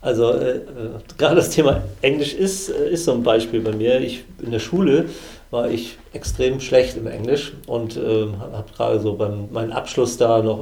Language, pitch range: German, 110-125 Hz